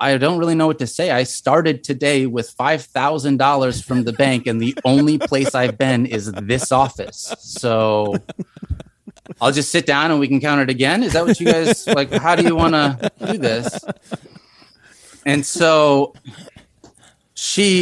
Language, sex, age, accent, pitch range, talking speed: English, male, 30-49, American, 110-140 Hz, 170 wpm